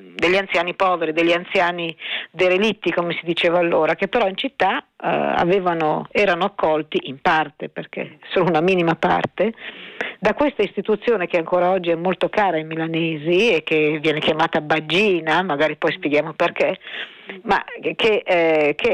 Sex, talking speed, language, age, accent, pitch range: female, 150 wpm, Italian, 50-69, native, 160-200 Hz